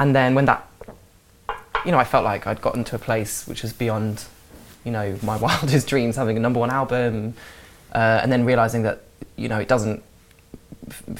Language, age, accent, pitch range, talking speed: English, 20-39, British, 110-135 Hz, 200 wpm